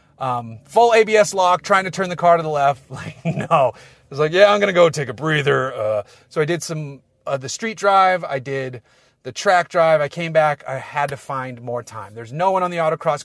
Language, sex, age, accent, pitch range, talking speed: English, male, 30-49, American, 130-170 Hz, 245 wpm